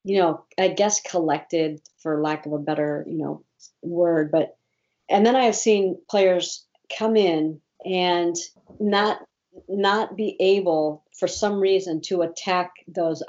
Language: English